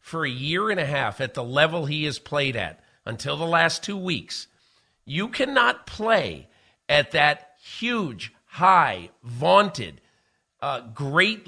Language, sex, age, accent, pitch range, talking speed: English, male, 50-69, American, 130-170 Hz, 145 wpm